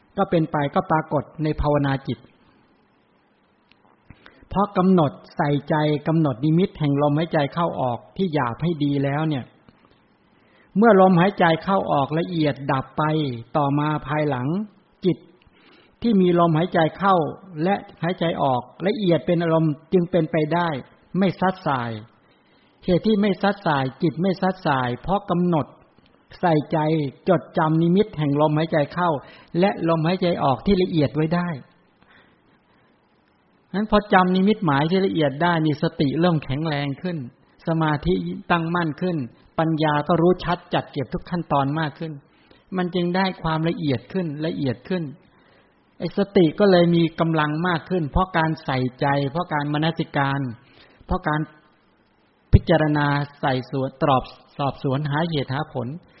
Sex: male